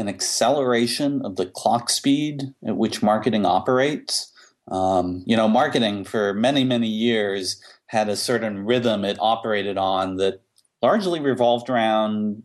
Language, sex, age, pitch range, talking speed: English, male, 40-59, 100-120 Hz, 140 wpm